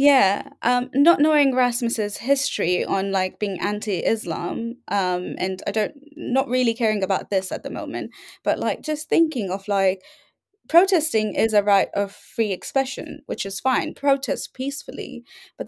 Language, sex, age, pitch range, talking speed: English, female, 20-39, 195-255 Hz, 155 wpm